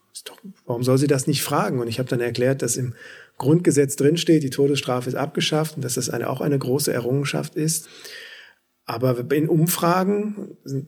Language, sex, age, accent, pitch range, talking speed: German, male, 40-59, German, 125-155 Hz, 170 wpm